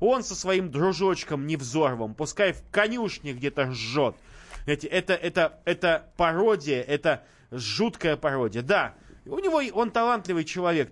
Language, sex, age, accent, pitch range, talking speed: Russian, male, 30-49, native, 145-205 Hz, 125 wpm